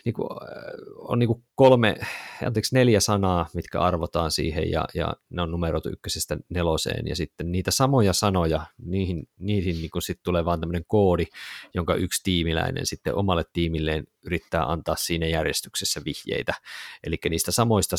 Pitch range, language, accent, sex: 85-105 Hz, Finnish, native, male